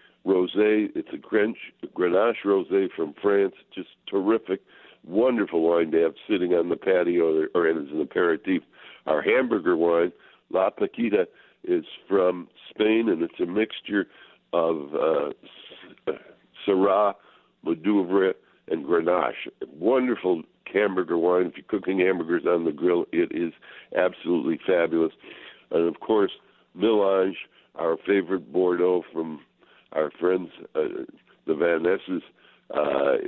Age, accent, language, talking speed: 60-79, American, English, 130 wpm